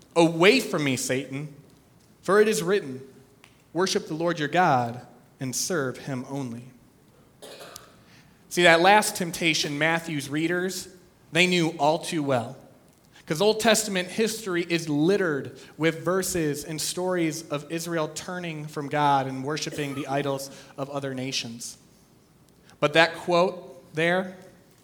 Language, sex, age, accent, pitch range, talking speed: English, male, 30-49, American, 140-185 Hz, 130 wpm